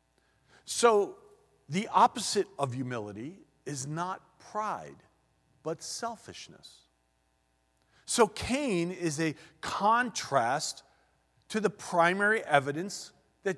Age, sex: 40-59, male